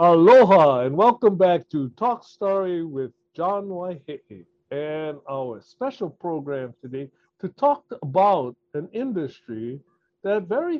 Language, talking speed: English, 120 wpm